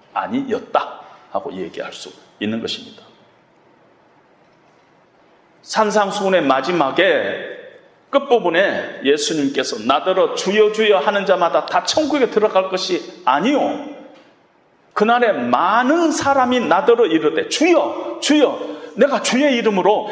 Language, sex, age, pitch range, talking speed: English, male, 40-59, 205-295 Hz, 90 wpm